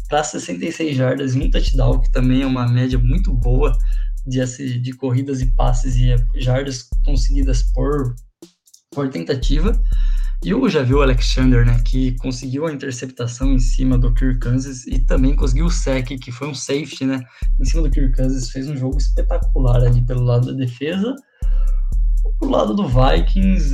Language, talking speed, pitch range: Portuguese, 175 wpm, 125-140 Hz